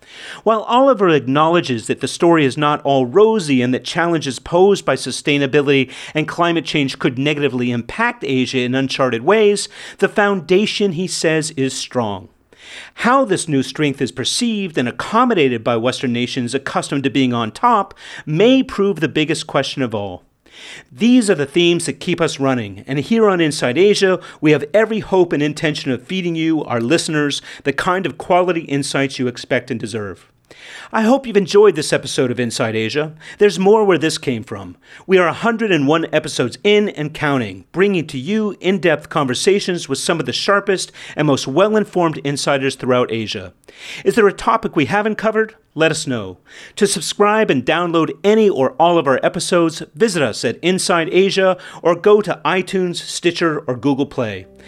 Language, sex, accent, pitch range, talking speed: English, male, American, 135-195 Hz, 175 wpm